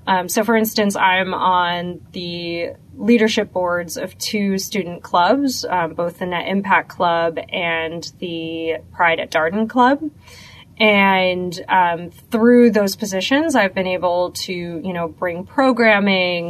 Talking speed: 140 wpm